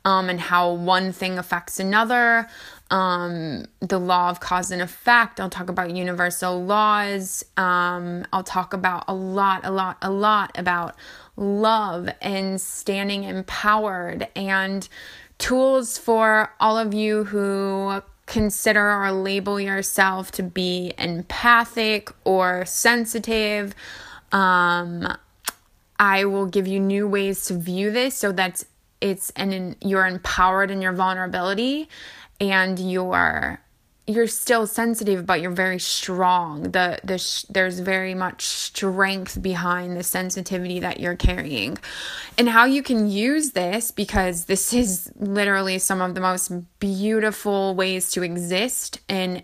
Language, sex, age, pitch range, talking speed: English, female, 20-39, 180-205 Hz, 130 wpm